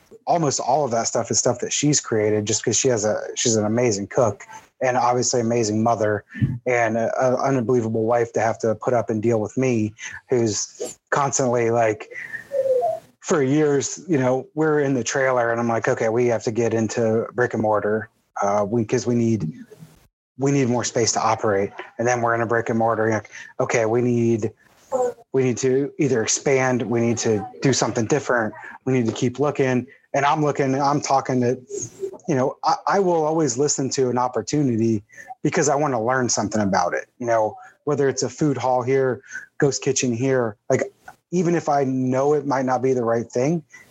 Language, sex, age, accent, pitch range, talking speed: English, male, 30-49, American, 115-135 Hz, 200 wpm